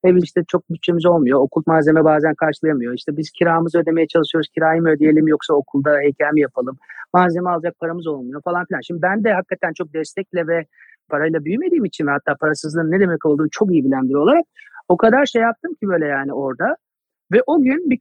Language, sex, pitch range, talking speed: Turkish, male, 155-210 Hz, 195 wpm